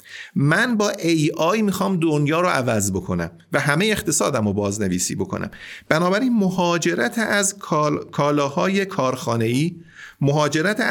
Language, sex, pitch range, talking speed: Persian, male, 125-190 Hz, 120 wpm